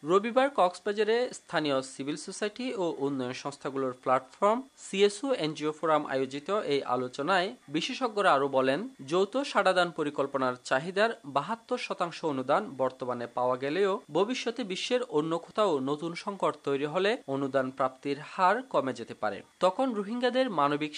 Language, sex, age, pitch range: Bengali, male, 30-49, 140-215 Hz